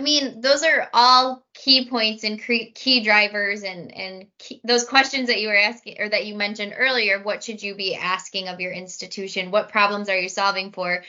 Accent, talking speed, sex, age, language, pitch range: American, 200 wpm, female, 10-29, English, 190-230 Hz